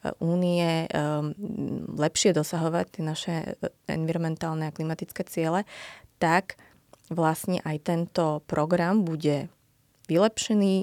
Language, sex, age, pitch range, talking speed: Slovak, female, 20-39, 140-165 Hz, 95 wpm